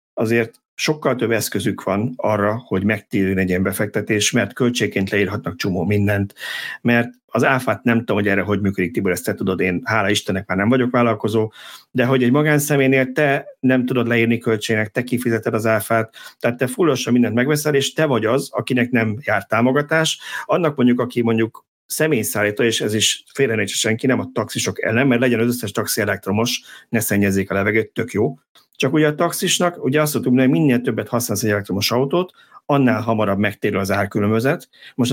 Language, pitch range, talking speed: Hungarian, 105-125 Hz, 185 wpm